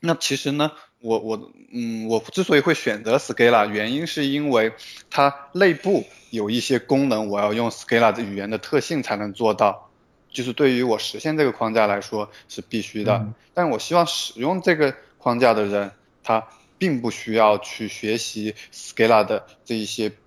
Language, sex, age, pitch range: Chinese, male, 20-39, 110-130 Hz